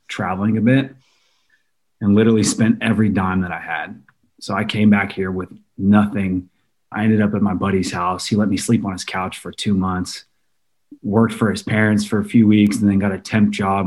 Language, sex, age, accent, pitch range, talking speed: English, male, 30-49, American, 95-110 Hz, 210 wpm